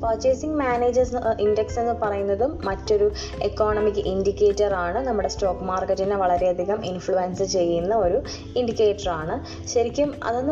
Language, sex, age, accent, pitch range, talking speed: Malayalam, female, 20-39, native, 185-230 Hz, 105 wpm